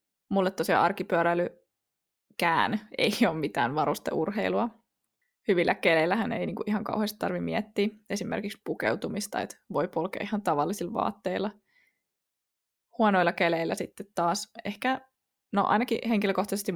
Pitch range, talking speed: 170-215 Hz, 105 wpm